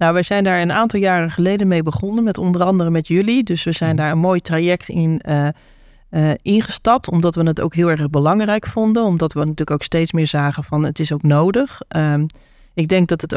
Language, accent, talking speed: Dutch, Dutch, 230 wpm